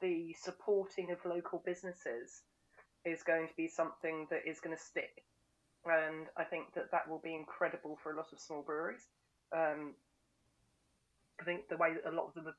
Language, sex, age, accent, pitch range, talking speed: English, female, 30-49, British, 160-190 Hz, 190 wpm